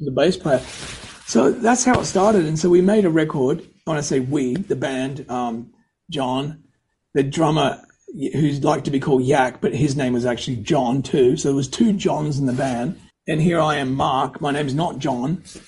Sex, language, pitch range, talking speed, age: male, English, 130-160 Hz, 205 wpm, 40-59